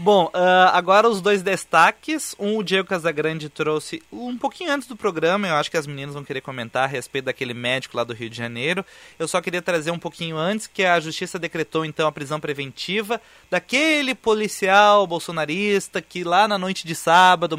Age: 30-49